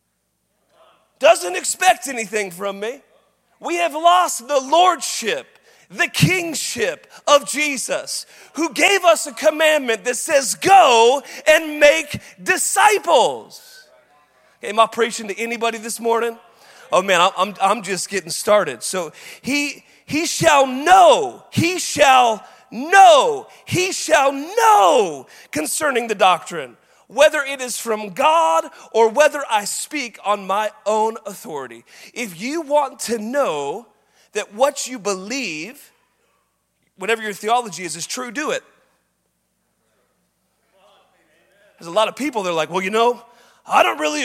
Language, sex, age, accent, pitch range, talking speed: English, male, 30-49, American, 215-300 Hz, 135 wpm